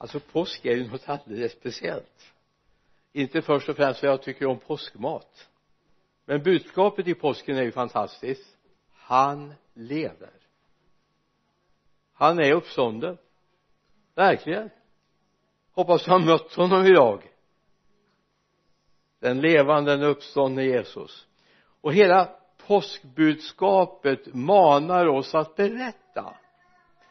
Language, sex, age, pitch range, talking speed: Swedish, male, 60-79, 145-190 Hz, 100 wpm